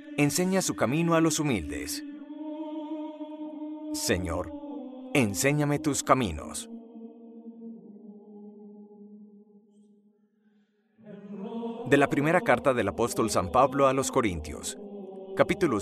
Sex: male